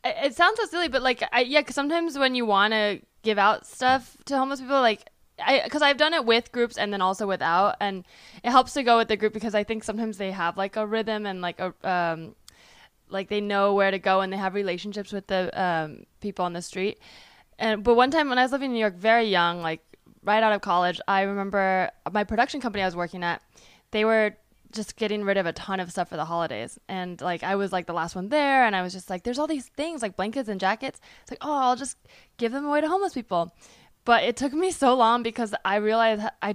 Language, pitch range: English, 190-245 Hz